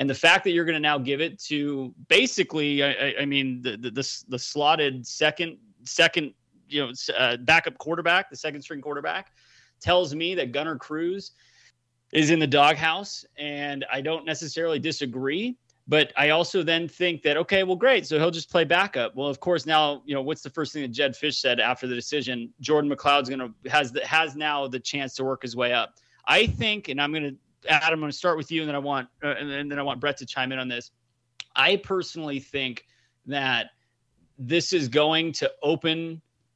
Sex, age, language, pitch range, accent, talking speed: male, 30-49, English, 130-160 Hz, American, 215 wpm